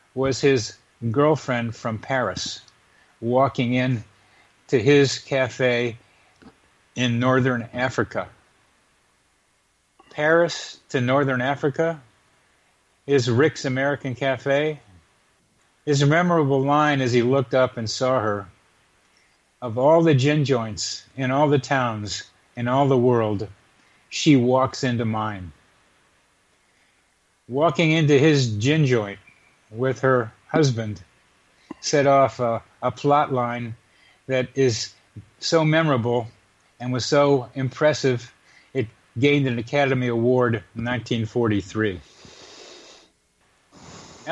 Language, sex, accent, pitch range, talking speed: English, male, American, 115-140 Hz, 105 wpm